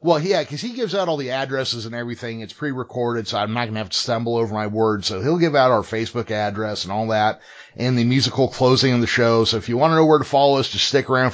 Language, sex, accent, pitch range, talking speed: English, male, American, 105-135 Hz, 285 wpm